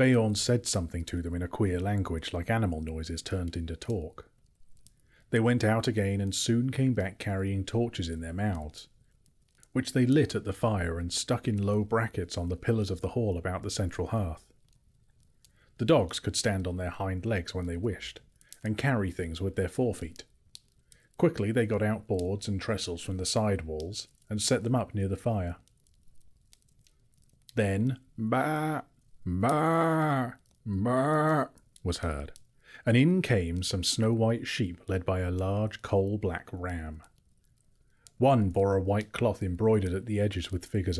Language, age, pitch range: English, 30-49, 90-115 Hz